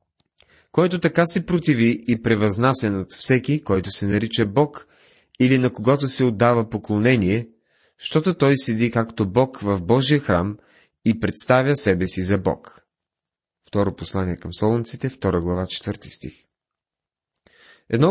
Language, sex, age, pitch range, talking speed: Bulgarian, male, 30-49, 95-130 Hz, 140 wpm